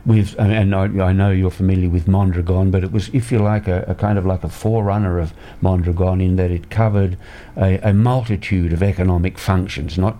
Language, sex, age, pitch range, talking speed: English, male, 60-79, 90-110 Hz, 195 wpm